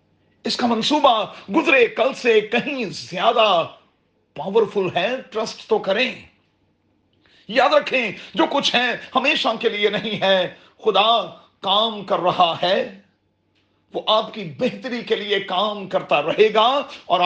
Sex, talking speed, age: male, 135 wpm, 40-59